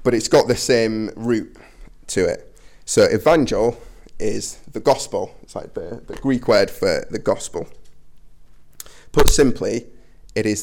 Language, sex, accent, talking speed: English, male, British, 145 wpm